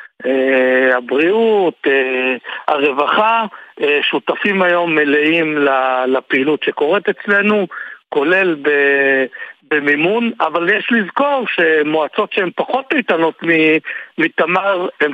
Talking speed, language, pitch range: 80 wpm, Hebrew, 150-210 Hz